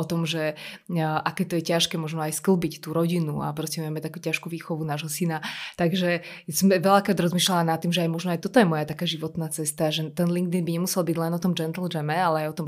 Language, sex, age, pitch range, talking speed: Slovak, female, 20-39, 165-195 Hz, 240 wpm